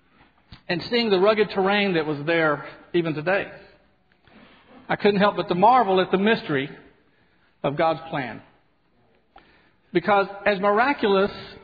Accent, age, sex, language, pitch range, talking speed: American, 50-69, male, English, 150-185 Hz, 130 wpm